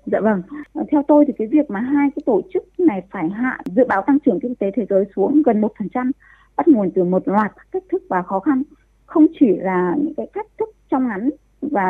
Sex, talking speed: female, 235 wpm